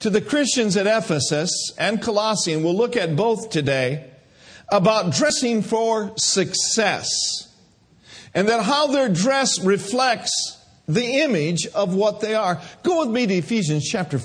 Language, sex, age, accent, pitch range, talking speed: English, male, 50-69, American, 170-225 Hz, 145 wpm